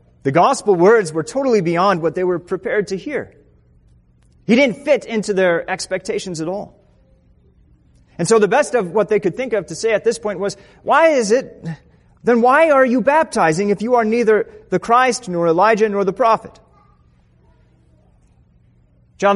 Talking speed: 175 wpm